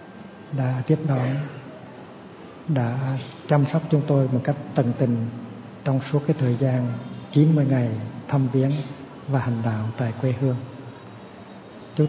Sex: male